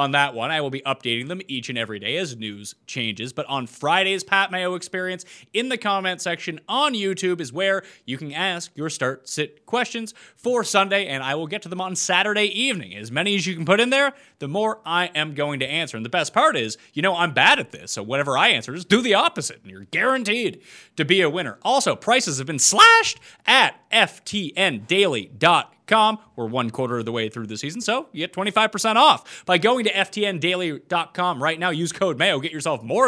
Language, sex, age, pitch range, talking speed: English, male, 30-49, 145-215 Hz, 220 wpm